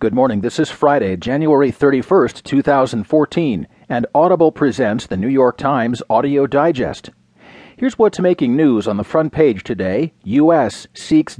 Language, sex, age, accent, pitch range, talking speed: English, male, 40-59, American, 125-180 Hz, 145 wpm